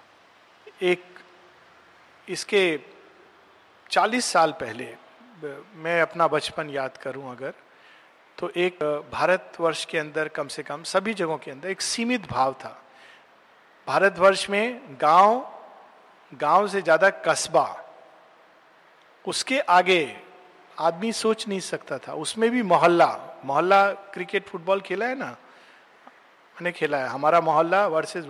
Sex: male